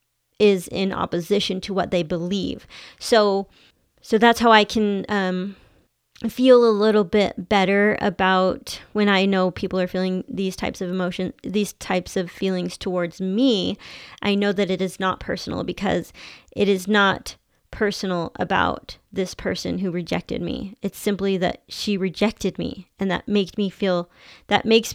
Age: 30-49